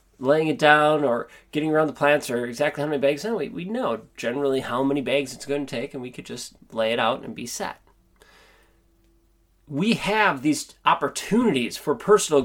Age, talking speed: 30-49, 195 wpm